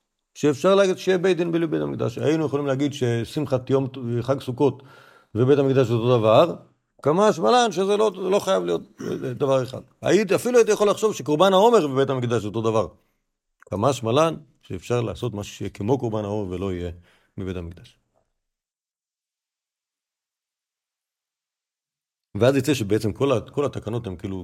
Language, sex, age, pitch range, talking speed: Hebrew, male, 50-69, 100-135 Hz, 150 wpm